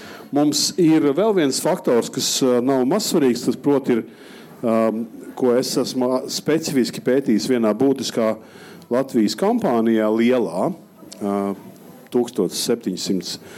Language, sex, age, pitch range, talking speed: English, male, 50-69, 110-135 Hz, 95 wpm